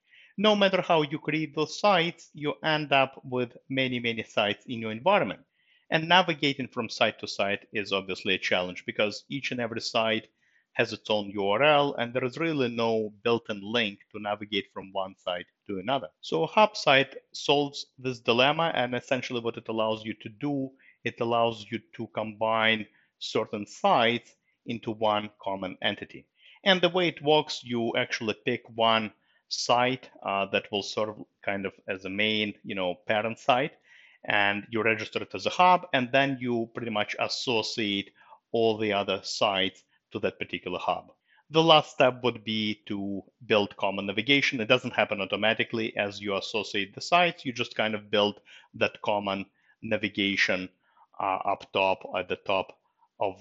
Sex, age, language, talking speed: male, 50-69, English, 170 wpm